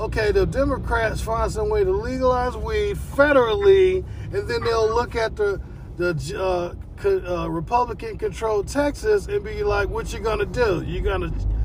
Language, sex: English, male